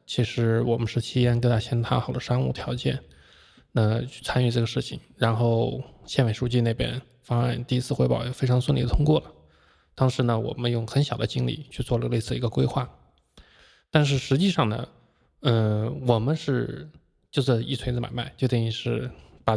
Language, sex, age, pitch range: Chinese, male, 20-39, 115-130 Hz